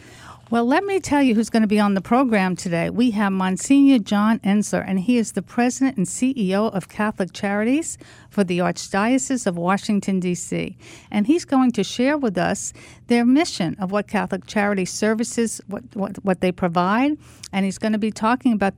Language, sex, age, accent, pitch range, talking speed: English, female, 50-69, American, 195-240 Hz, 190 wpm